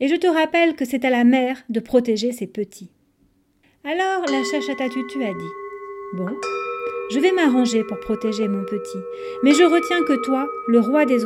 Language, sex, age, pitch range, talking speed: French, female, 40-59, 205-295 Hz, 185 wpm